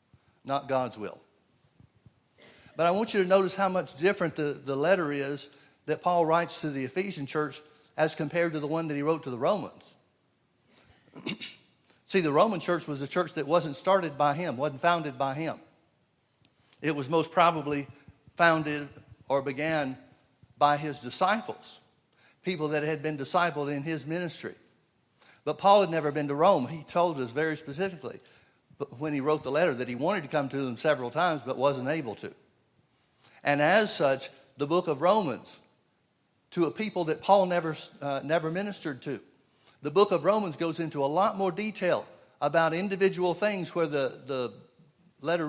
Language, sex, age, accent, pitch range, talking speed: English, male, 60-79, American, 140-175 Hz, 175 wpm